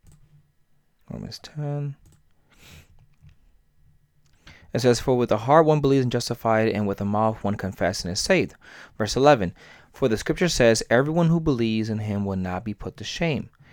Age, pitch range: 30-49, 95-130 Hz